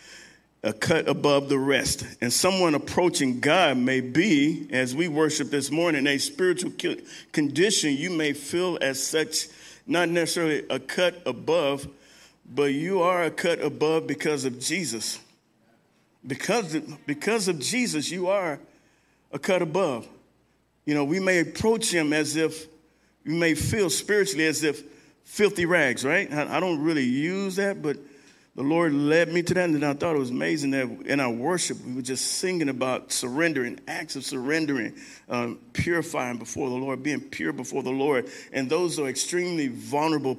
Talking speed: 165 wpm